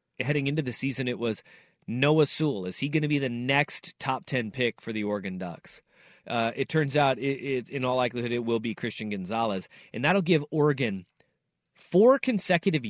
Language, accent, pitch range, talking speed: English, American, 125-170 Hz, 190 wpm